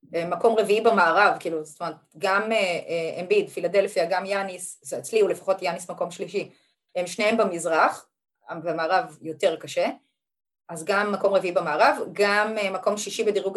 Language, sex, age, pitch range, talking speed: Hebrew, female, 20-39, 175-245 Hz, 160 wpm